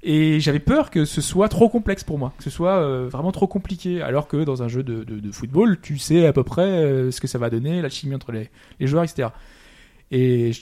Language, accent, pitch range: French, French, 135-185 Hz